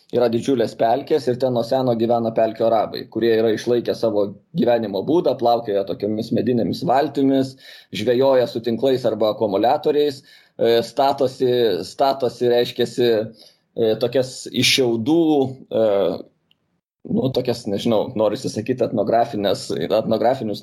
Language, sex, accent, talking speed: English, male, Croatian, 105 wpm